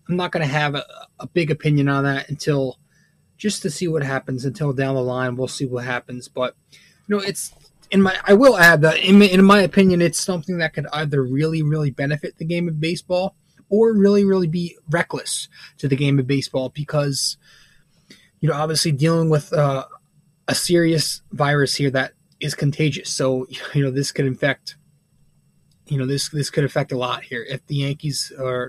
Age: 20-39